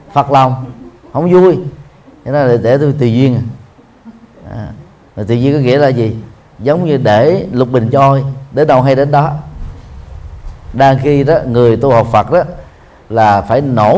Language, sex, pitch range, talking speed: Vietnamese, male, 120-155 Hz, 165 wpm